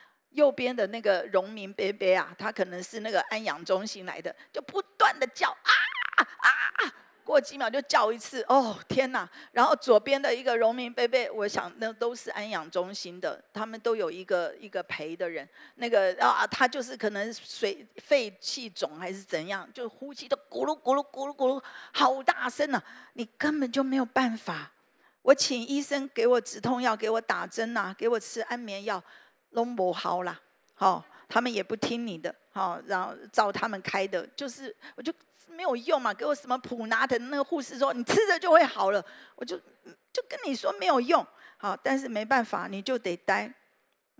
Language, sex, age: Chinese, female, 50-69